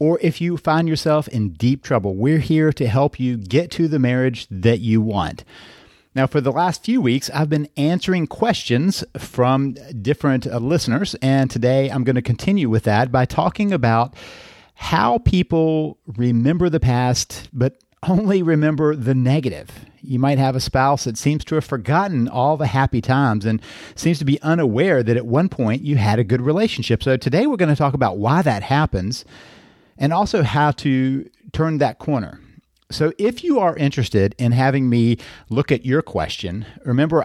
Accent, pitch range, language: American, 115-150 Hz, English